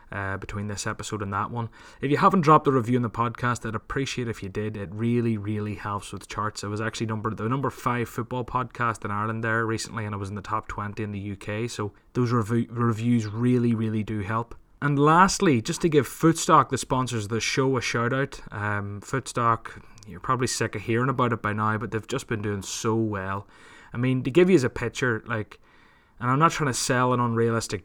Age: 20-39